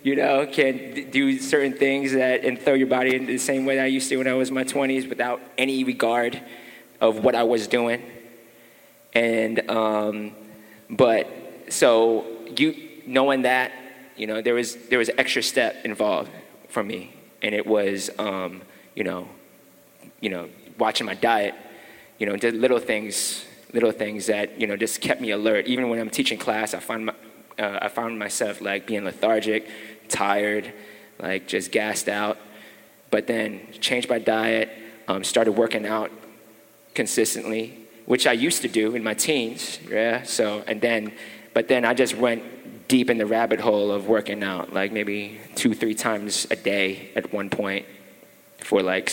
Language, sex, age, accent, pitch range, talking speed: English, male, 20-39, American, 110-130 Hz, 175 wpm